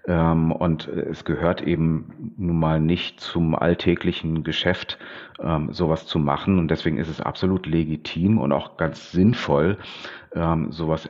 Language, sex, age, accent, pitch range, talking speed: German, male, 40-59, German, 80-90 Hz, 130 wpm